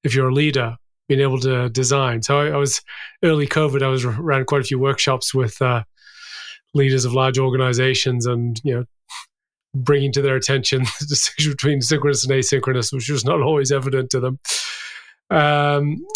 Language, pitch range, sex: English, 130-145 Hz, male